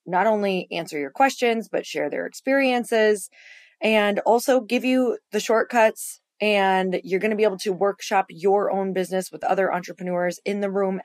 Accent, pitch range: American, 185-235 Hz